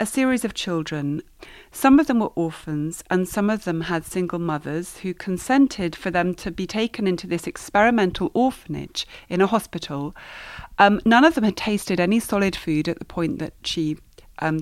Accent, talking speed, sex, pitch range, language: British, 185 wpm, female, 165-220 Hz, English